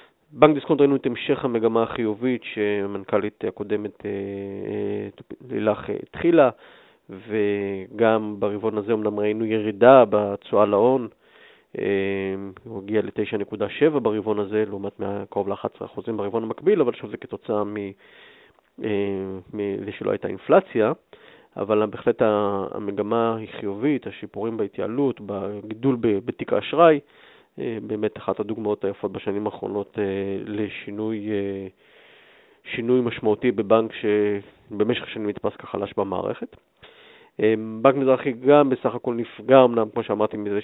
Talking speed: 105 wpm